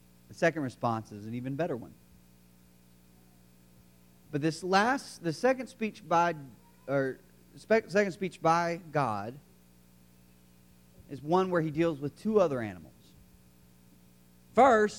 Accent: American